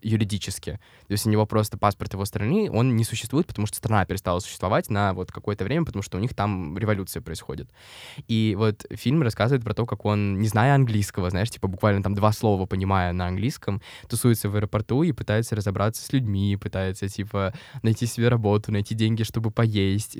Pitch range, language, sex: 100-125 Hz, Russian, male